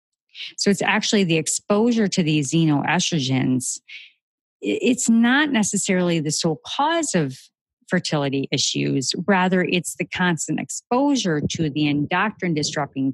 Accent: American